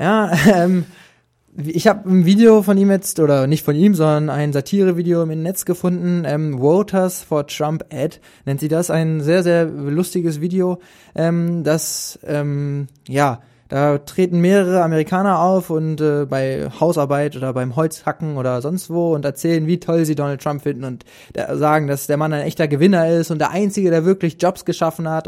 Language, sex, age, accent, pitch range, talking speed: German, male, 20-39, German, 145-175 Hz, 185 wpm